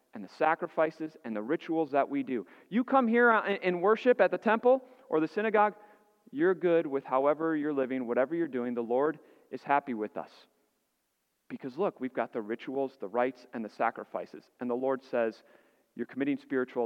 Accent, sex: American, male